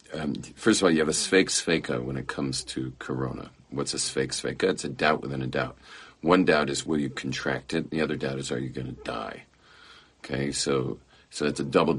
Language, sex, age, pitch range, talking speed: English, male, 50-69, 65-75 Hz, 235 wpm